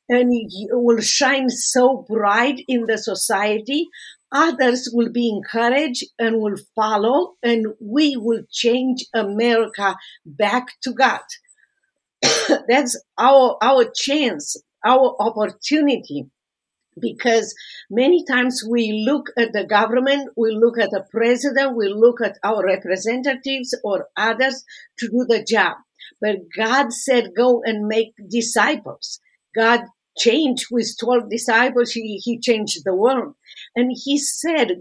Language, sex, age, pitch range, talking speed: English, female, 50-69, 215-260 Hz, 125 wpm